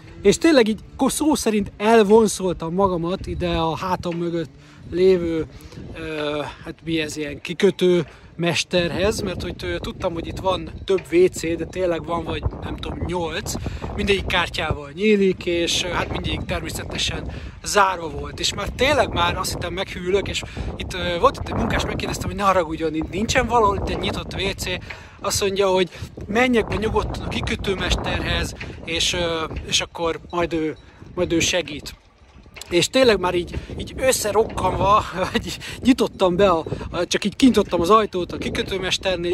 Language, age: Hungarian, 30-49